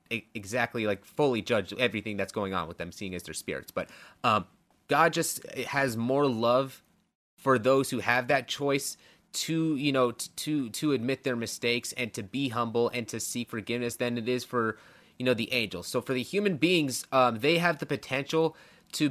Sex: male